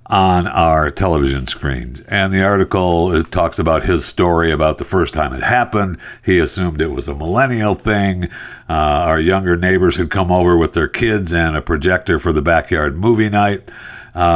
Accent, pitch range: American, 80-100 Hz